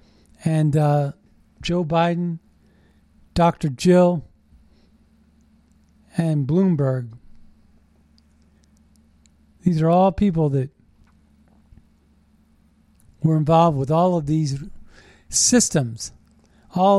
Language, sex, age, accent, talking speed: English, male, 40-59, American, 75 wpm